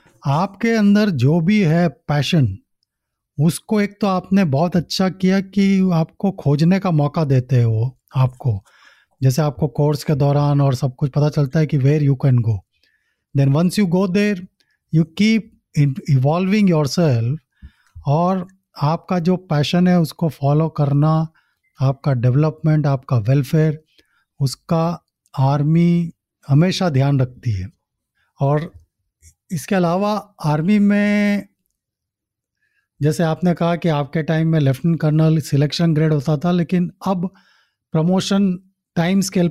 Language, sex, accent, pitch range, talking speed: Hindi, male, native, 145-185 Hz, 135 wpm